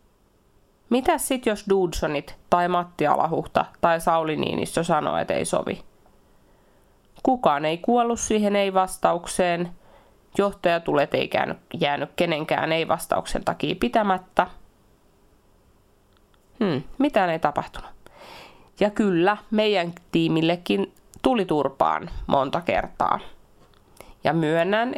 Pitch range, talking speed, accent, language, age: 155-195 Hz, 100 wpm, native, Finnish, 30-49